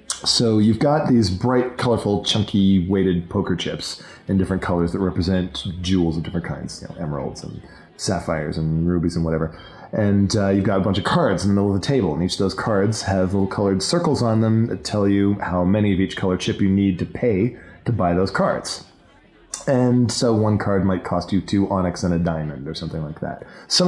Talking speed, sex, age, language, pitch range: 220 wpm, male, 20-39, English, 95-120 Hz